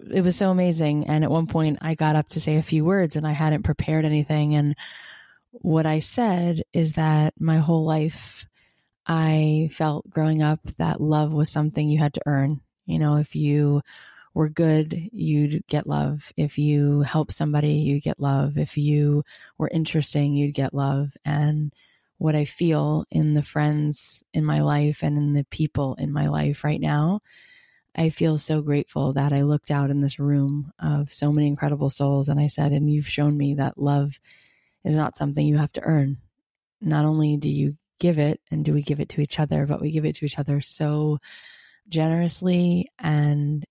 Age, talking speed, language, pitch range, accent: 20-39, 190 wpm, English, 145-160 Hz, American